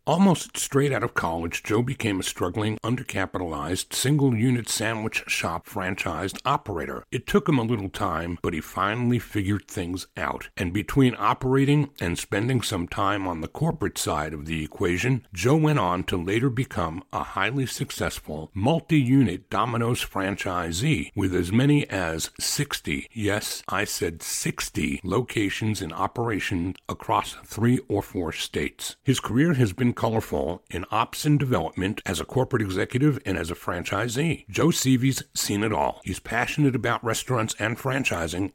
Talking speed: 155 wpm